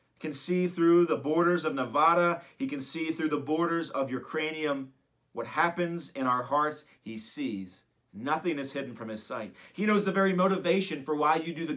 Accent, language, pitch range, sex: American, English, 135-175 Hz, male